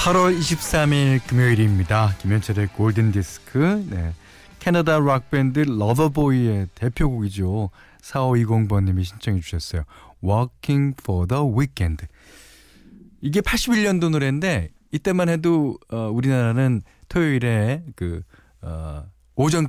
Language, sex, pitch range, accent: Korean, male, 100-150 Hz, native